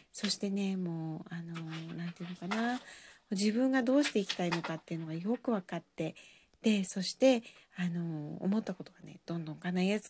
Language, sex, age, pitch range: Japanese, female, 40-59, 185-230 Hz